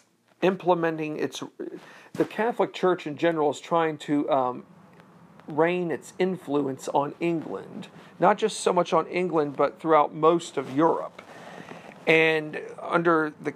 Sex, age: male, 50-69